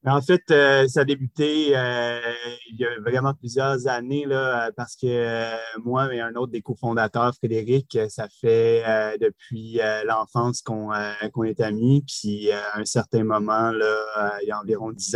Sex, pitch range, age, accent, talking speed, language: male, 110-130 Hz, 30-49, Canadian, 195 wpm, French